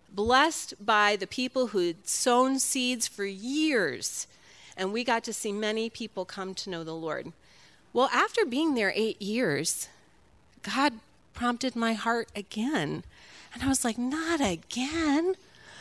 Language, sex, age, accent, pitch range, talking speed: English, female, 30-49, American, 195-265 Hz, 145 wpm